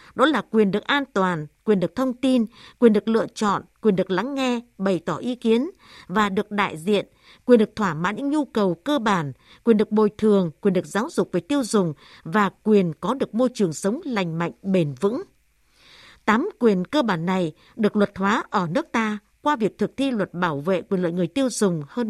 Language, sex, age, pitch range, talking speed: Vietnamese, female, 60-79, 190-240 Hz, 220 wpm